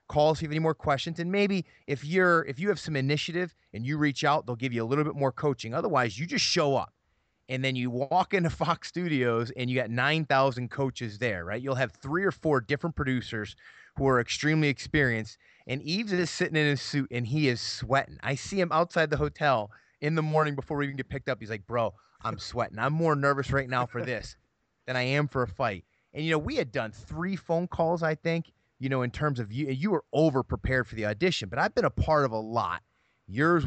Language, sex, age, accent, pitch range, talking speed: English, male, 30-49, American, 115-150 Hz, 240 wpm